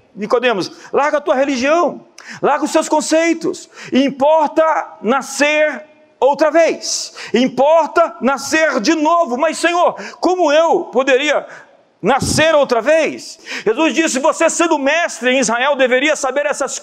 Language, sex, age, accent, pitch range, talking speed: Portuguese, male, 50-69, Brazilian, 270-330 Hz, 125 wpm